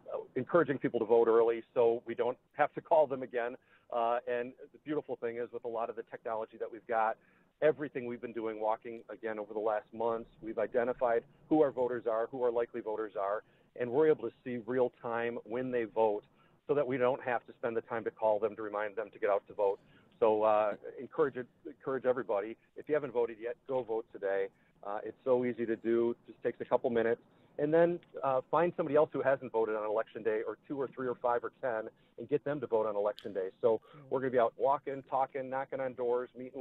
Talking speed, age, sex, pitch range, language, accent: 235 wpm, 40-59, male, 115-145 Hz, English, American